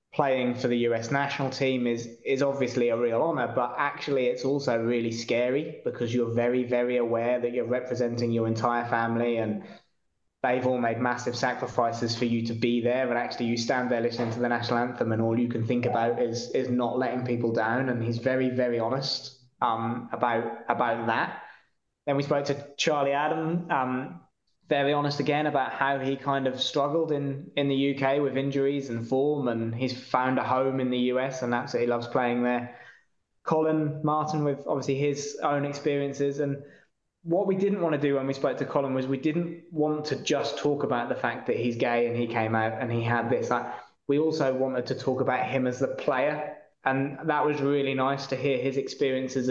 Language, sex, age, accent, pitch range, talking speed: English, male, 20-39, British, 120-140 Hz, 205 wpm